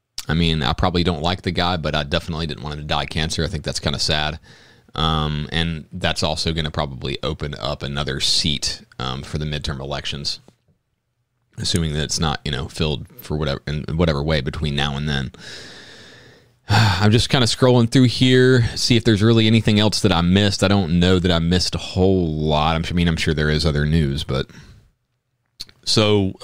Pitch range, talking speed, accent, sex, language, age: 80-110 Hz, 205 wpm, American, male, English, 30-49